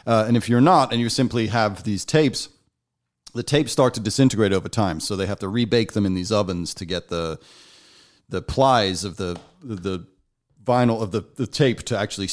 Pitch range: 100-125 Hz